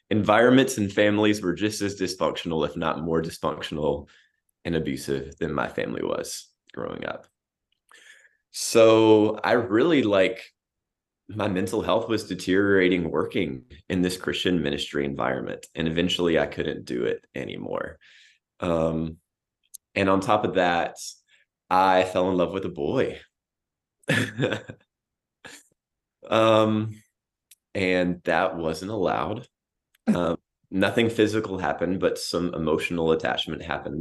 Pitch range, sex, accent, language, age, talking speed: 80-105 Hz, male, American, English, 20-39, 120 wpm